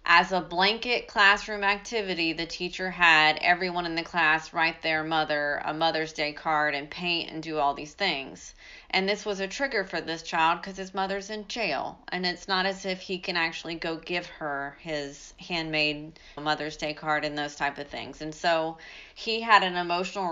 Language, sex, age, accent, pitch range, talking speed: English, female, 30-49, American, 150-180 Hz, 195 wpm